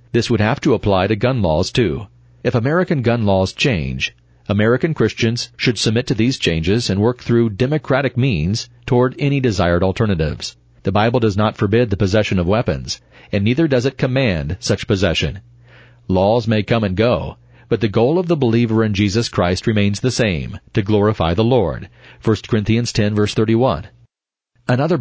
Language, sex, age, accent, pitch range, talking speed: English, male, 40-59, American, 100-125 Hz, 175 wpm